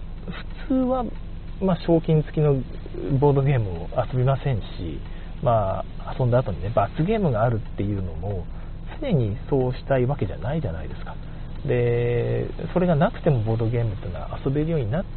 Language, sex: Japanese, male